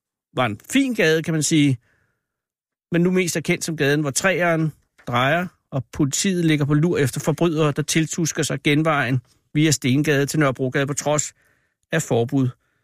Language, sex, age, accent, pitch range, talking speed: Danish, male, 60-79, native, 130-165 Hz, 170 wpm